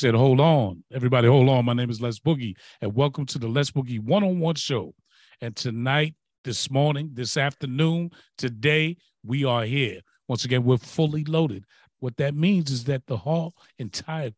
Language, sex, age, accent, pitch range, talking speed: English, male, 40-59, American, 120-160 Hz, 175 wpm